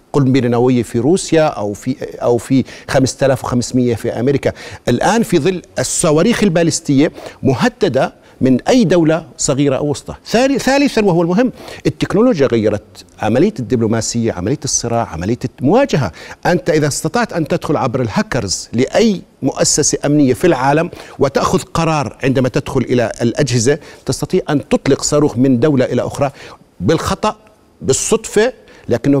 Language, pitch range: Arabic, 130-180 Hz